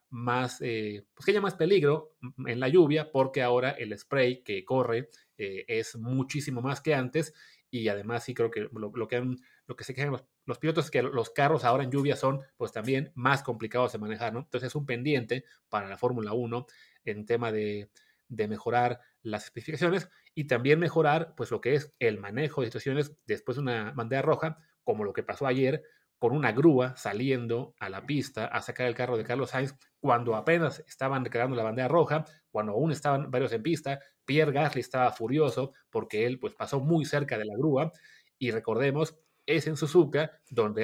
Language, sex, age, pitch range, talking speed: Spanish, male, 30-49, 120-150 Hz, 200 wpm